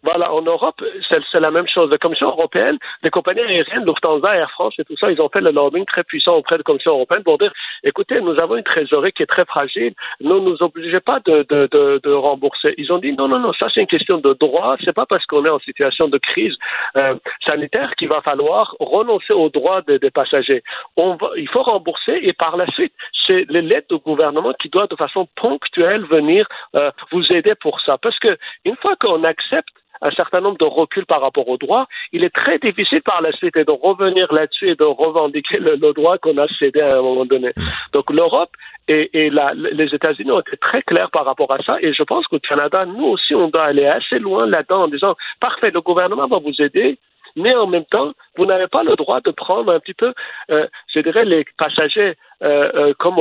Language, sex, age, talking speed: French, male, 50-69, 230 wpm